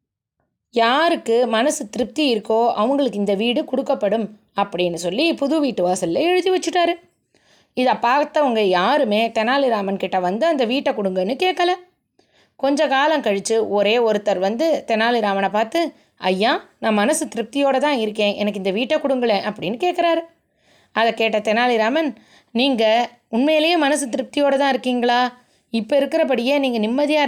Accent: native